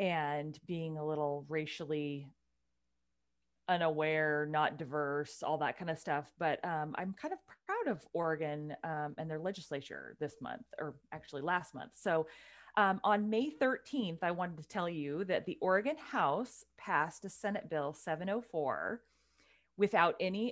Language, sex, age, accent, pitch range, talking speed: English, female, 30-49, American, 150-195 Hz, 150 wpm